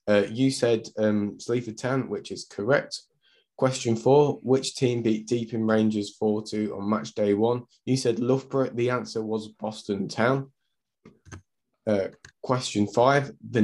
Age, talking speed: 20-39, 155 wpm